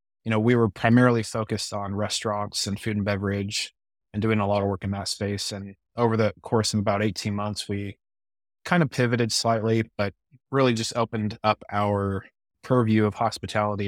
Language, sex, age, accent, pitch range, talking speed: English, male, 20-39, American, 100-110 Hz, 185 wpm